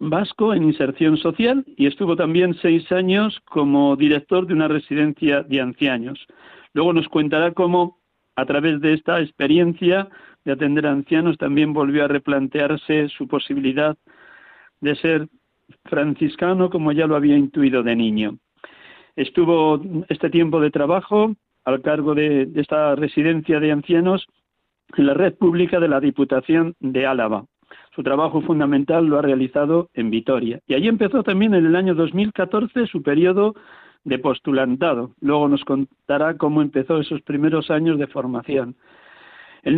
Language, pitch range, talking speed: Spanish, 145-175 Hz, 145 wpm